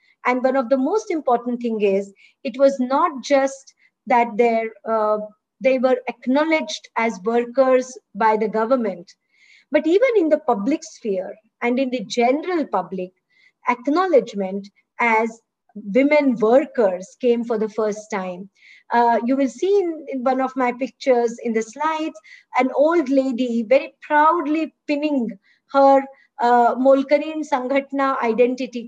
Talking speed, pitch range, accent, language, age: 135 wpm, 235-300 Hz, Indian, English, 50-69